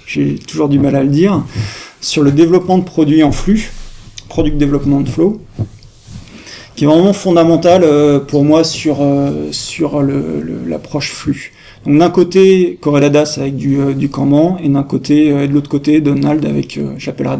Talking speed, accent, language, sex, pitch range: 175 wpm, French, French, male, 140-165 Hz